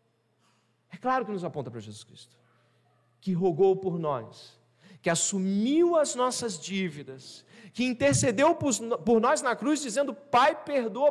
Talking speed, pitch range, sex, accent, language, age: 135 wpm, 115-180 Hz, male, Brazilian, Portuguese, 40-59